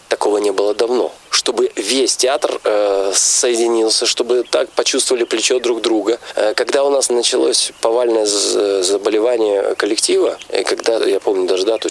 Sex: male